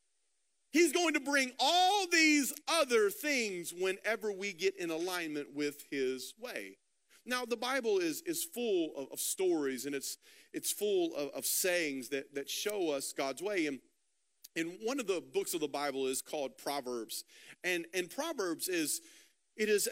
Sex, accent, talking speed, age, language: male, American, 170 wpm, 40-59, English